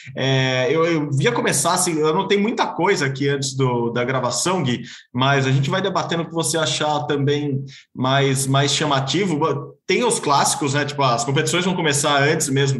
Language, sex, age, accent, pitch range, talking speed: Portuguese, male, 20-39, Brazilian, 130-155 Hz, 190 wpm